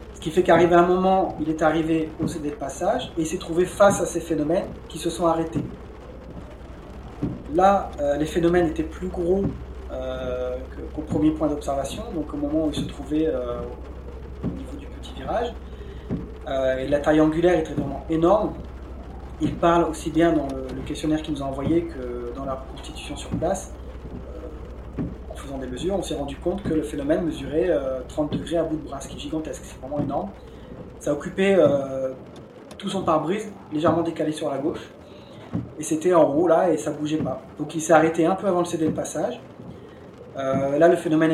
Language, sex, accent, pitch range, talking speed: French, male, French, 130-170 Hz, 195 wpm